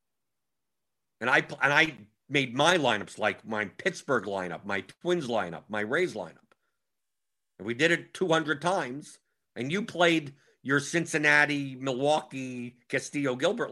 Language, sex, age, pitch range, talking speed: English, male, 50-69, 125-170 Hz, 135 wpm